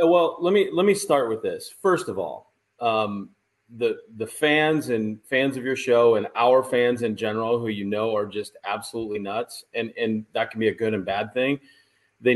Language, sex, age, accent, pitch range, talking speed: English, male, 30-49, American, 110-160 Hz, 210 wpm